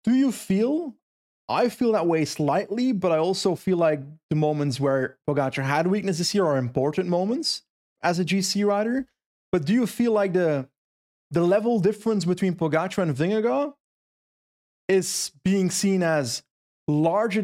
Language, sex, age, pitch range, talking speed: English, male, 30-49, 155-210 Hz, 155 wpm